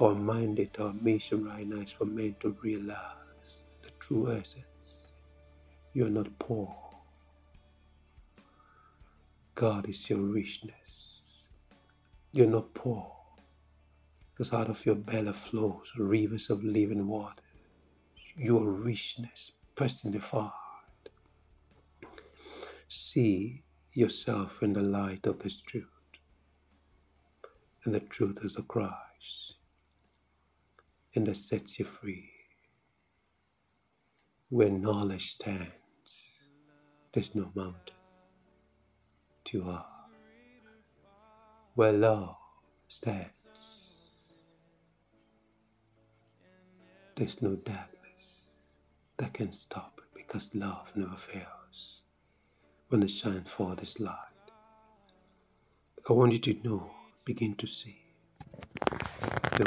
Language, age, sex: English, 60-79, male